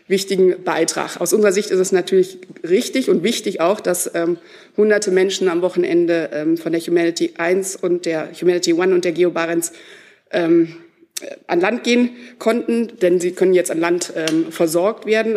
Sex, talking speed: female, 170 wpm